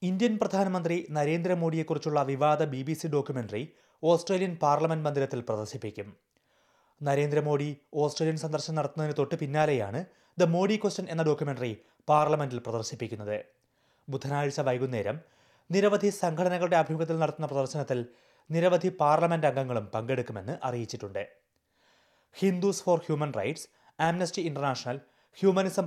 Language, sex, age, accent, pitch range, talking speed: Malayalam, male, 30-49, native, 135-170 Hz, 100 wpm